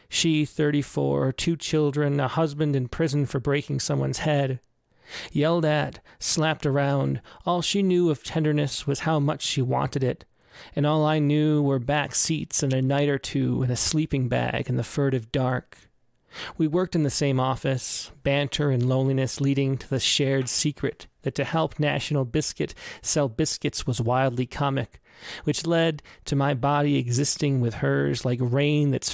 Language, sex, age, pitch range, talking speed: English, male, 30-49, 130-150 Hz, 170 wpm